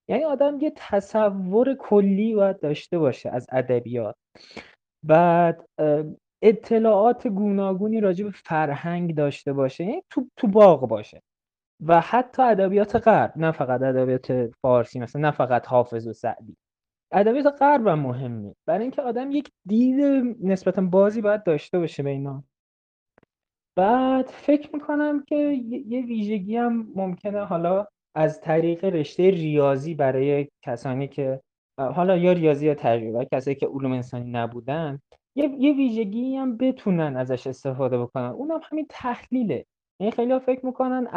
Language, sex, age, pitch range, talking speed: Persian, male, 20-39, 145-225 Hz, 135 wpm